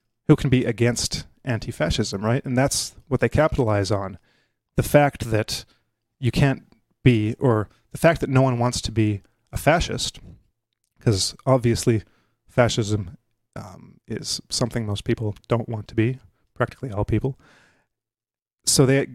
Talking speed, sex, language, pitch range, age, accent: 145 wpm, male, English, 110-130 Hz, 30-49, American